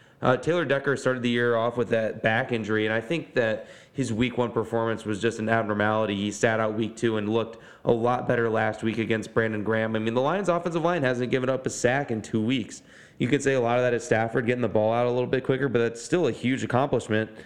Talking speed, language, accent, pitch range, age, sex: 260 wpm, English, American, 110-125 Hz, 20-39, male